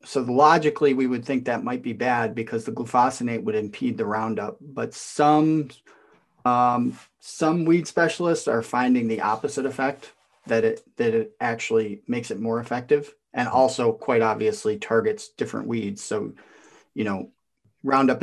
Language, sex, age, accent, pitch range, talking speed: English, male, 30-49, American, 110-135 Hz, 160 wpm